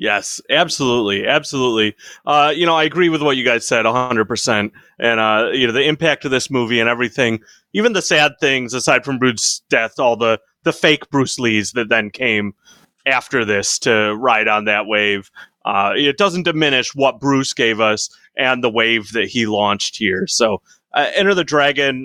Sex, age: male, 30-49